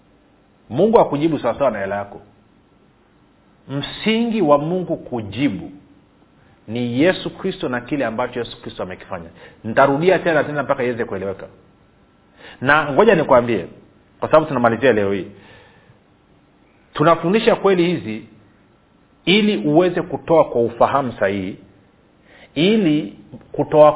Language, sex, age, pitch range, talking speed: Swahili, male, 40-59, 115-165 Hz, 115 wpm